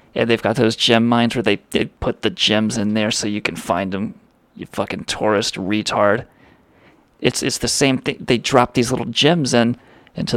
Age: 30-49